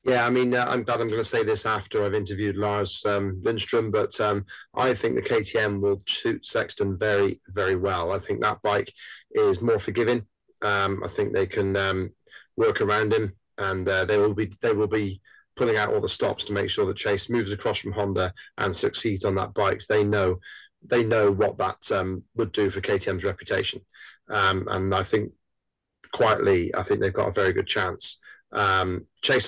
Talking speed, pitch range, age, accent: 200 wpm, 100-115 Hz, 30-49, British